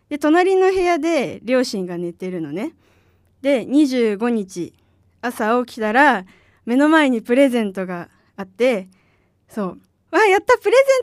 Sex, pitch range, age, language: female, 210-310 Hz, 20-39, Japanese